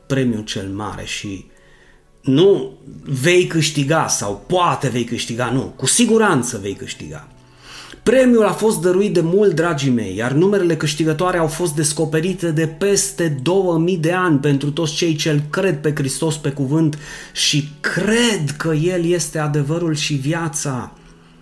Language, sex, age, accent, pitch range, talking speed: Romanian, male, 30-49, native, 135-170 Hz, 145 wpm